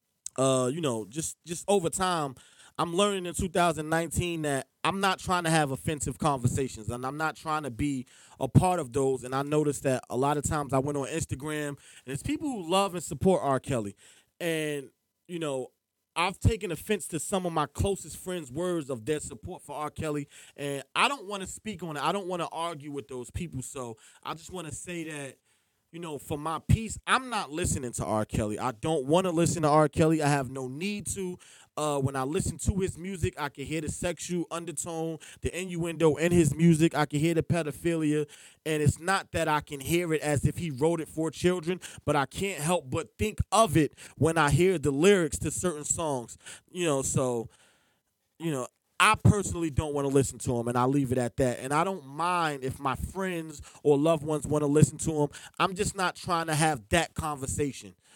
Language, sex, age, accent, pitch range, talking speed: English, male, 20-39, American, 135-170 Hz, 220 wpm